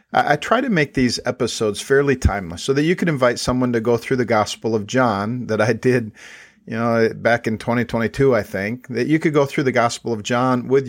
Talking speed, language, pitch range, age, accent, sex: 225 wpm, English, 115-135 Hz, 50-69, American, male